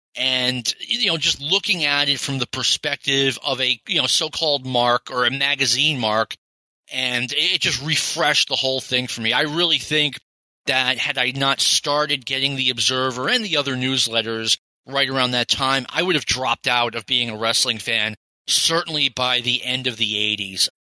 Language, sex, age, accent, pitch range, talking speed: English, male, 30-49, American, 130-185 Hz, 185 wpm